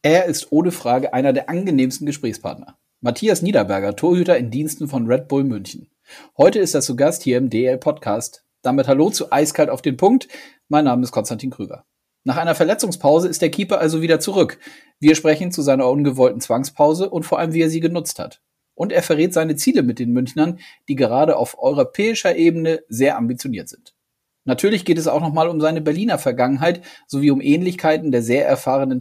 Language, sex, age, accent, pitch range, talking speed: German, male, 40-59, German, 130-170 Hz, 190 wpm